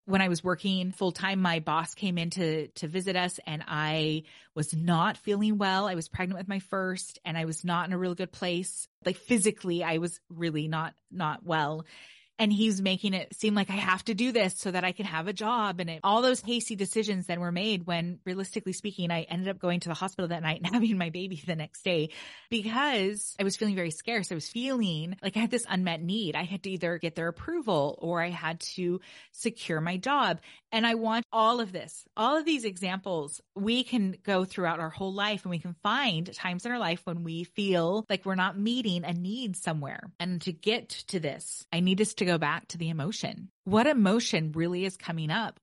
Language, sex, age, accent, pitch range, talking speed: English, female, 20-39, American, 170-210 Hz, 225 wpm